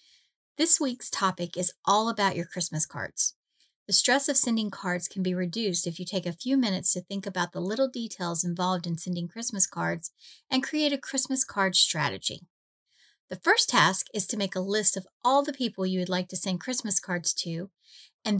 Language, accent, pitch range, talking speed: English, American, 175-225 Hz, 200 wpm